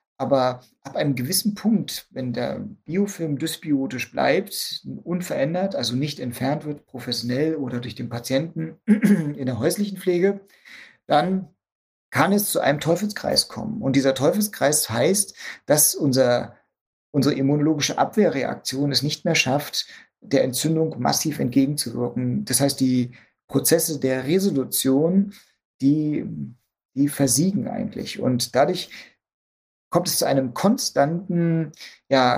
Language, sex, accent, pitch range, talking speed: German, male, German, 130-170 Hz, 120 wpm